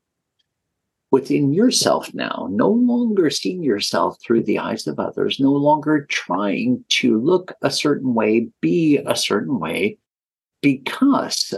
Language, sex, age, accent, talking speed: English, male, 50-69, American, 130 wpm